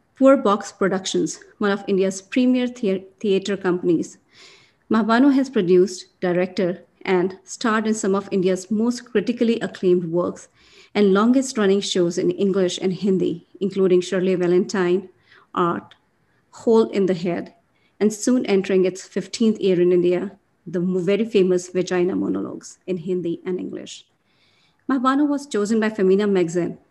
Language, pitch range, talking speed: English, 185-215 Hz, 140 wpm